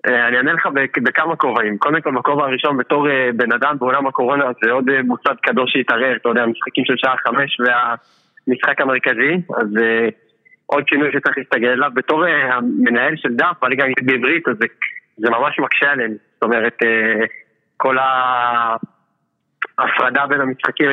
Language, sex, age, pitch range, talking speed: Hebrew, male, 20-39, 125-150 Hz, 170 wpm